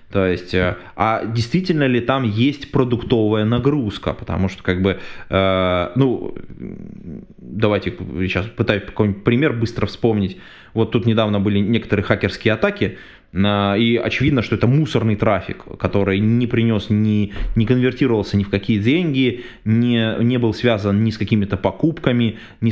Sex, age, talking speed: male, 20-39, 140 wpm